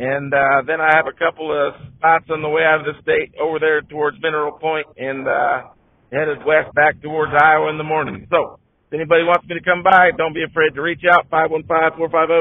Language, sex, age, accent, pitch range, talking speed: English, male, 50-69, American, 140-170 Hz, 220 wpm